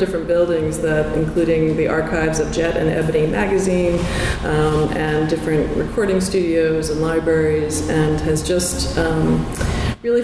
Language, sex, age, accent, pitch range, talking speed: English, female, 40-59, American, 155-175 Hz, 135 wpm